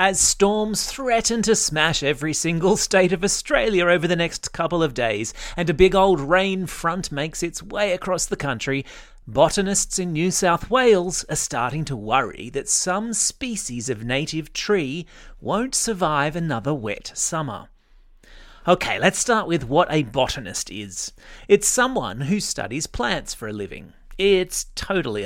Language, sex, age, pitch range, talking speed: English, male, 30-49, 140-200 Hz, 155 wpm